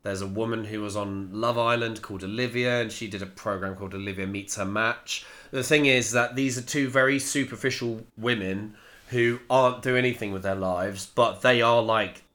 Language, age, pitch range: English, 30-49, 105-125 Hz